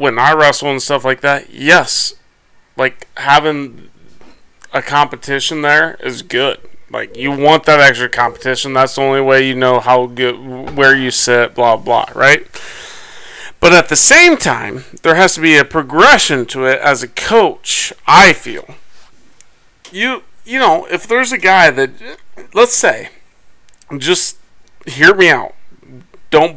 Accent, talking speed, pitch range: American, 155 wpm, 130-155 Hz